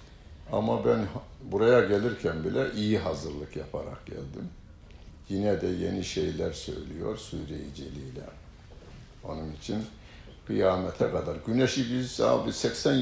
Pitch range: 80-115 Hz